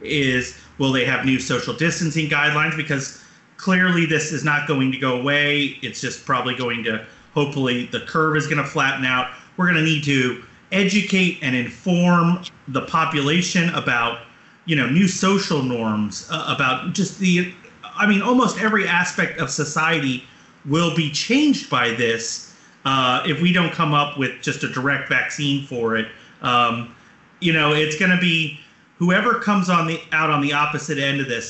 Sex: male